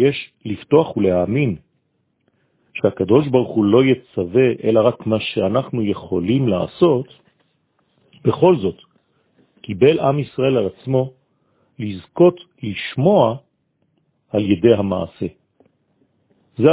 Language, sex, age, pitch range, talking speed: French, male, 50-69, 105-140 Hz, 95 wpm